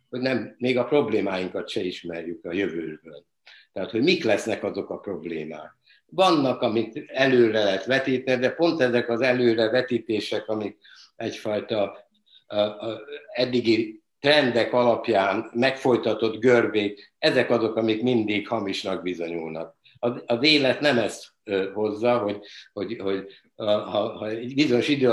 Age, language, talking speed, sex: 60-79, Hungarian, 130 wpm, male